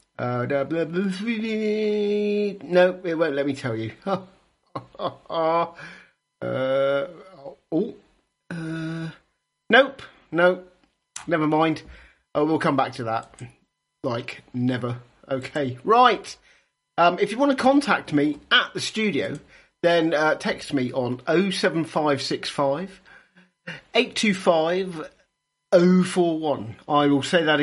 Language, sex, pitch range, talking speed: English, male, 140-185 Hz, 105 wpm